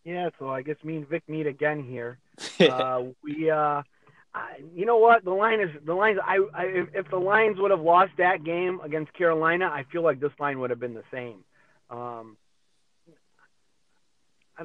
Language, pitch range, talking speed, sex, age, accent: English, 145-185 Hz, 190 wpm, male, 30-49, American